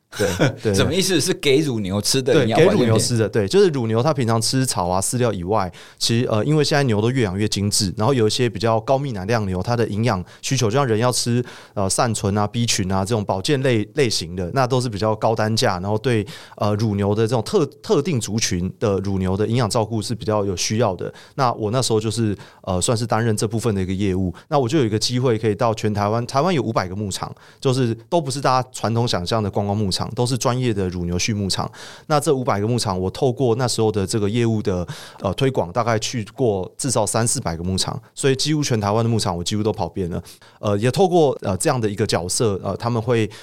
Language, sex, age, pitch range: Chinese, male, 30-49, 100-125 Hz